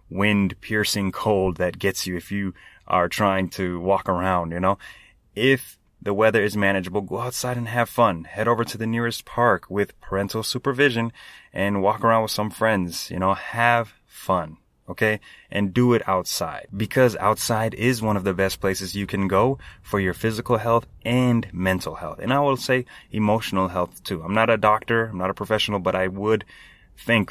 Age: 20-39